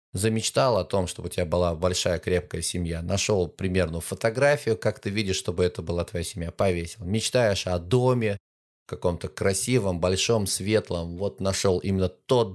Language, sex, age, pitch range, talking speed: Russian, male, 20-39, 90-125 Hz, 160 wpm